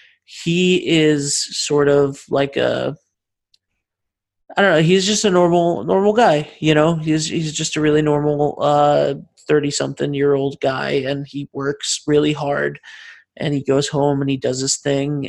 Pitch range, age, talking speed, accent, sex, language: 140-155 Hz, 30-49, 170 wpm, American, male, English